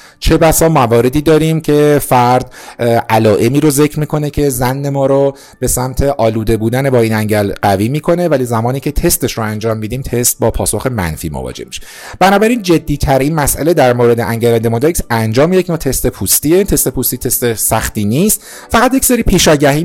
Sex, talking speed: male, 170 wpm